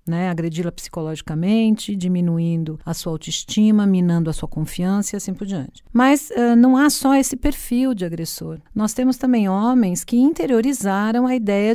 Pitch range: 185-245 Hz